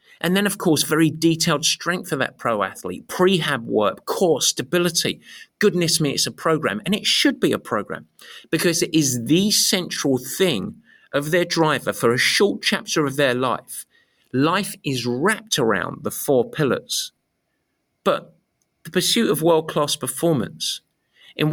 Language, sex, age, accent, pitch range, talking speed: English, male, 50-69, British, 145-195 Hz, 155 wpm